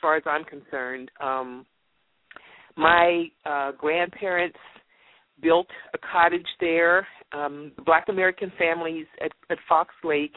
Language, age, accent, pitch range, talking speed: English, 50-69, American, 150-200 Hz, 115 wpm